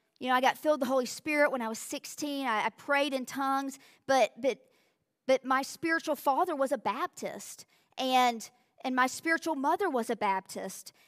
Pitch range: 255-320 Hz